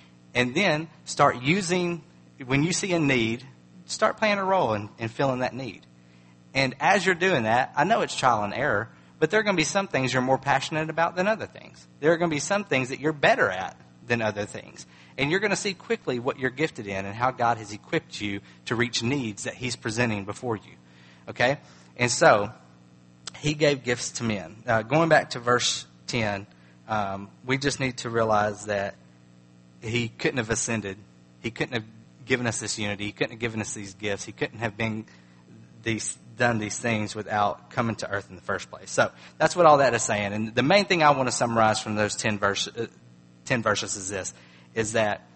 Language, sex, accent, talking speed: English, male, American, 215 wpm